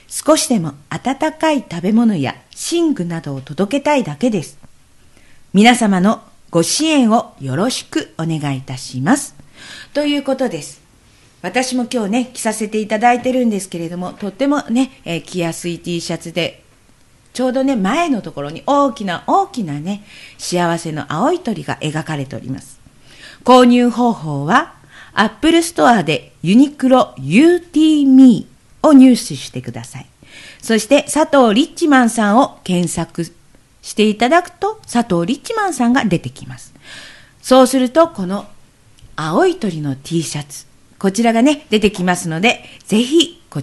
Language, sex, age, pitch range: Japanese, female, 50-69, 165-270 Hz